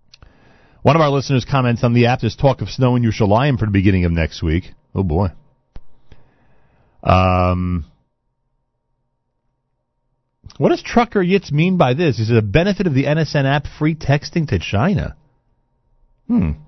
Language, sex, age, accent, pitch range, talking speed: English, male, 40-59, American, 95-135 Hz, 160 wpm